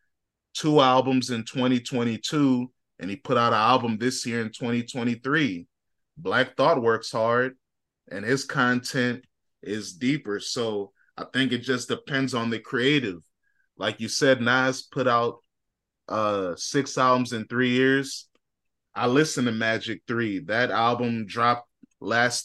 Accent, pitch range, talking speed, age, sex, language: American, 115-130 Hz, 140 wpm, 20-39, male, English